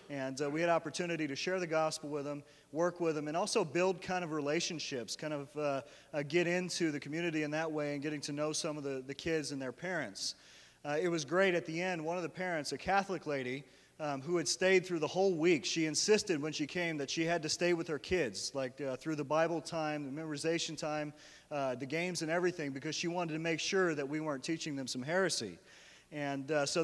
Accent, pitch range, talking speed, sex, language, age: American, 145-175 Hz, 240 wpm, male, English, 40-59